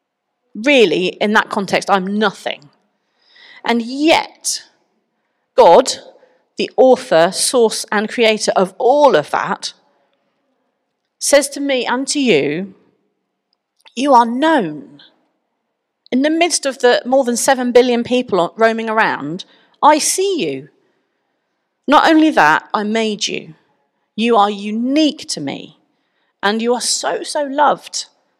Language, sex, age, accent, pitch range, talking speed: English, female, 40-59, British, 185-270 Hz, 125 wpm